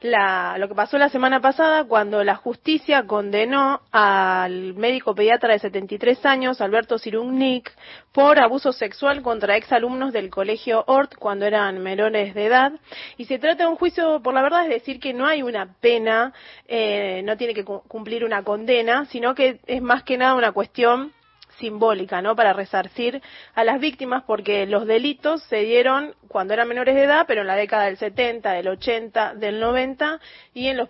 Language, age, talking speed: Spanish, 30-49, 180 wpm